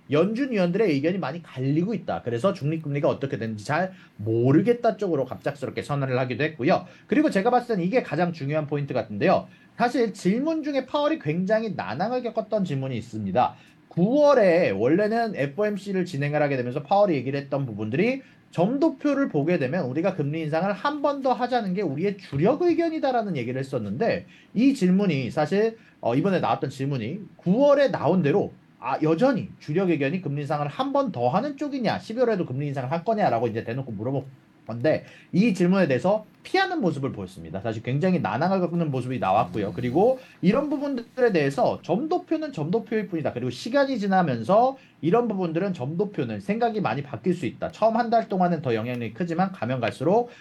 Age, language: 40-59, Korean